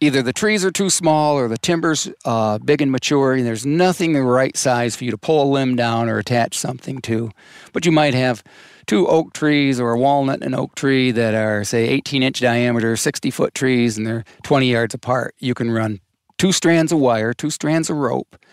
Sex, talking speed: male, 215 wpm